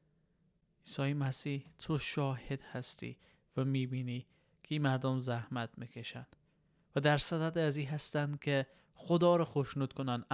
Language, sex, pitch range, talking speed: Persian, male, 125-150 Hz, 135 wpm